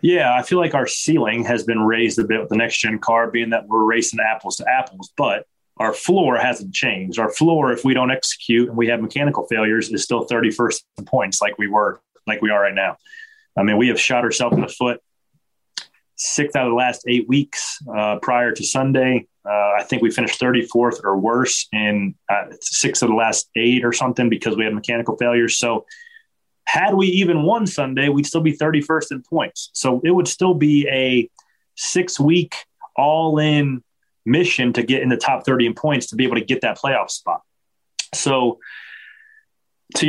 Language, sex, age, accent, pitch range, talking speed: English, male, 30-49, American, 115-155 Hz, 200 wpm